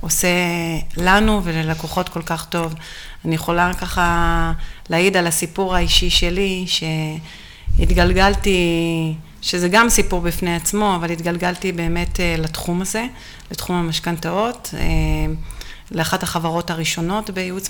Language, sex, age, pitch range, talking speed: Hebrew, female, 30-49, 165-195 Hz, 105 wpm